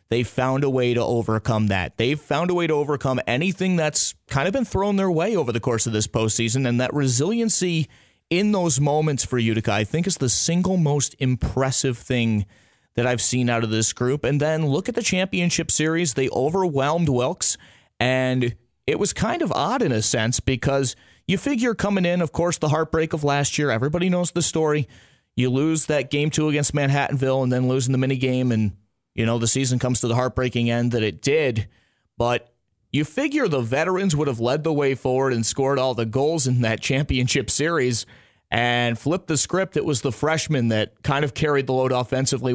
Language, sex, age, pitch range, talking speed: English, male, 30-49, 120-150 Hz, 205 wpm